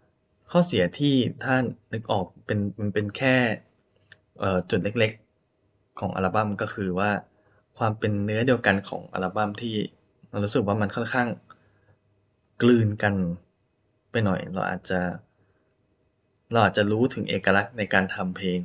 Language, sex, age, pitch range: Thai, male, 10-29, 95-115 Hz